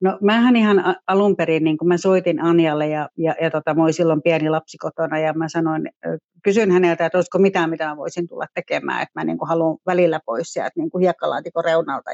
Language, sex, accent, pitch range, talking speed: Finnish, female, native, 165-185 Hz, 215 wpm